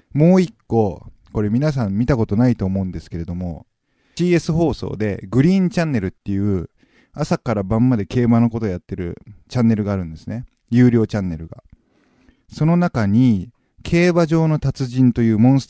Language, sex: Japanese, male